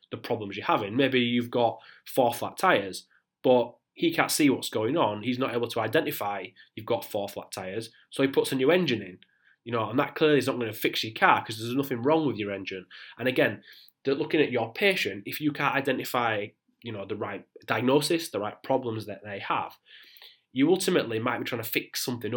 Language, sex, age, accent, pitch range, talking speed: English, male, 20-39, British, 110-145 Hz, 220 wpm